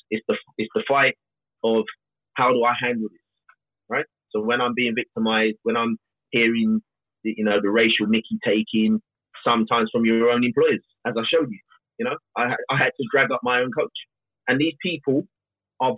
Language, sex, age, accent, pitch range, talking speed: English, male, 30-49, British, 120-160 Hz, 190 wpm